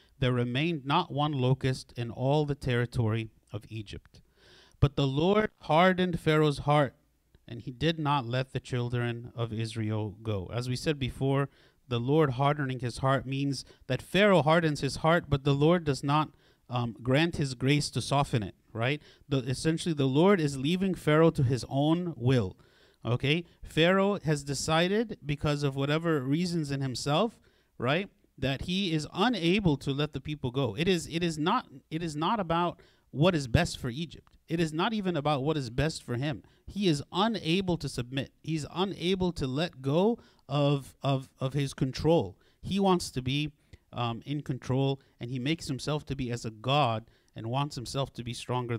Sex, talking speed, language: male, 180 wpm, English